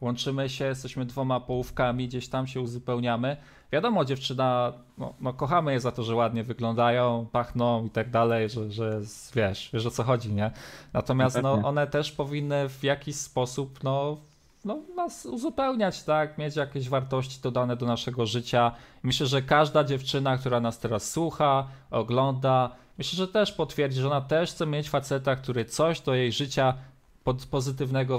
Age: 20-39